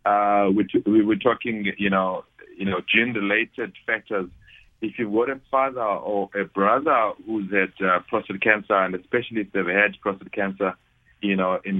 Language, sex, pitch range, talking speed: English, male, 95-110 Hz, 180 wpm